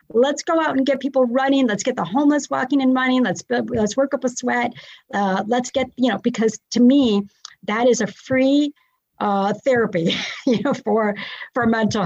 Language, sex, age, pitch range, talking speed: English, female, 50-69, 190-245 Hz, 195 wpm